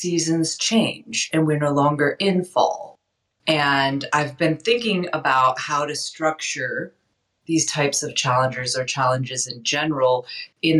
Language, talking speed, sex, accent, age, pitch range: English, 140 wpm, female, American, 30-49, 135-165 Hz